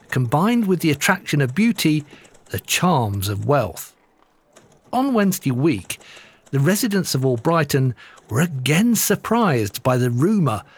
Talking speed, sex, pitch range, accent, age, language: 135 wpm, male, 120-180 Hz, British, 50-69, English